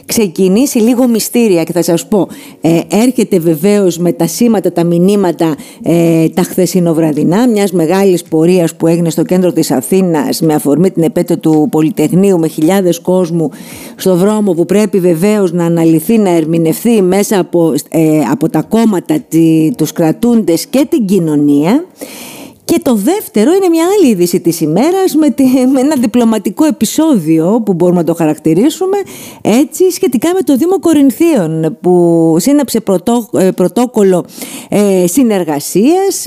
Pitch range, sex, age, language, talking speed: 170-270 Hz, female, 50-69, Greek, 140 wpm